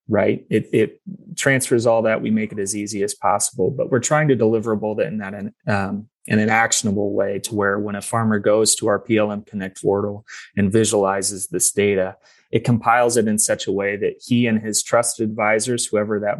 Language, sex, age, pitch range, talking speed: English, male, 20-39, 100-115 Hz, 205 wpm